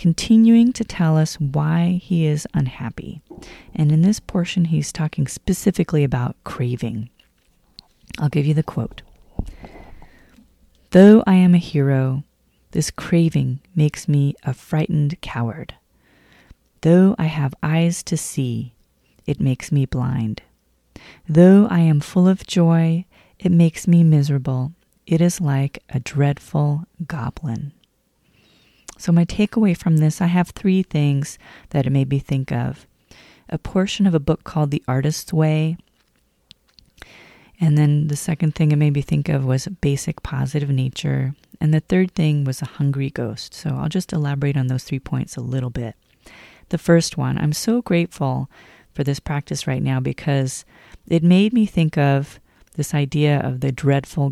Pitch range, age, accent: 135-170 Hz, 30-49, American